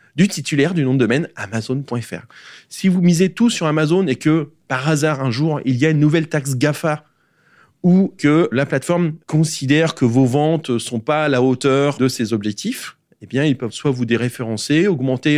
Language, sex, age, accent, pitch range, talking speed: French, male, 30-49, French, 120-155 Hz, 200 wpm